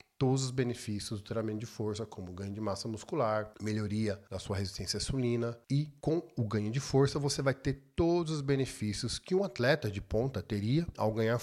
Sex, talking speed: male, 195 wpm